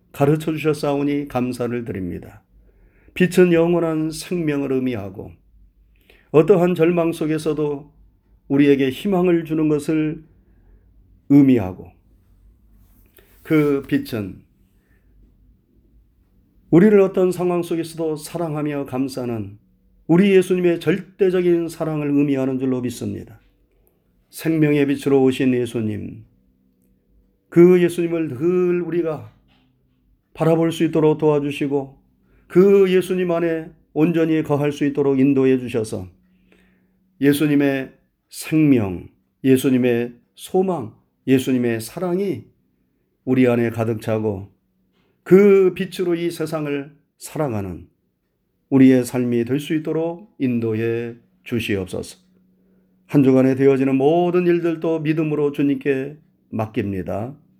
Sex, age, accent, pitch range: male, 40-59, native, 110-160 Hz